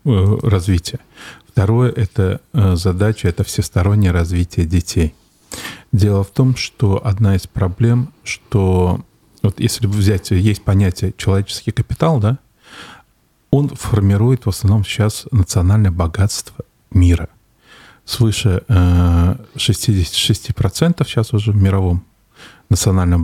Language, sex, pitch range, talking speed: Russian, male, 95-120 Hz, 105 wpm